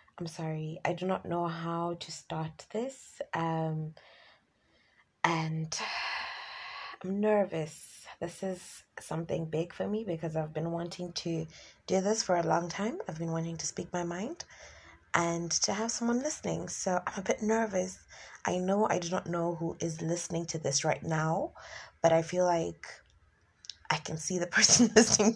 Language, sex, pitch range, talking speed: English, female, 160-195 Hz, 170 wpm